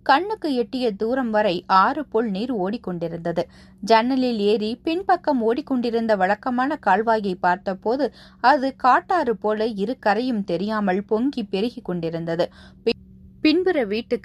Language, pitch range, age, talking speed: Tamil, 190-245 Hz, 20-39, 105 wpm